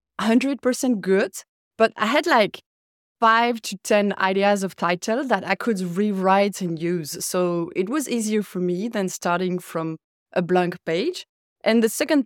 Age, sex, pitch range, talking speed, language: 20-39, female, 180-220 Hz, 155 wpm, English